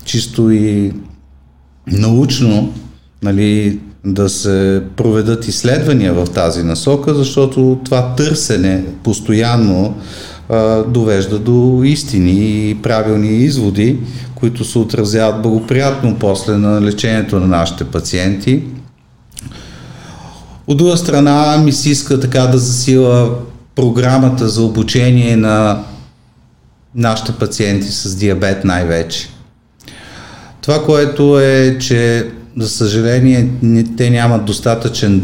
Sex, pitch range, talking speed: male, 100-125 Hz, 100 wpm